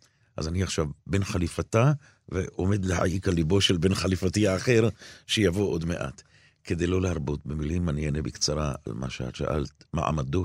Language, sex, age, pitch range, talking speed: Hebrew, male, 50-69, 80-110 Hz, 160 wpm